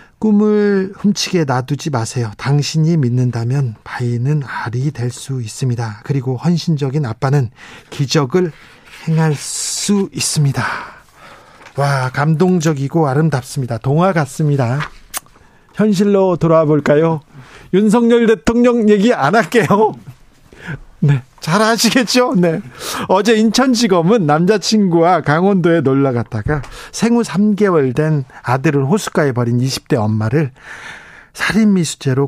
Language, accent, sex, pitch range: Korean, native, male, 130-185 Hz